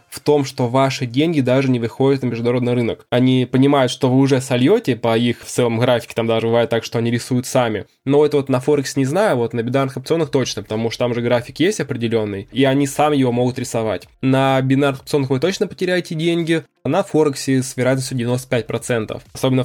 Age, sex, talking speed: 20-39, male, 210 wpm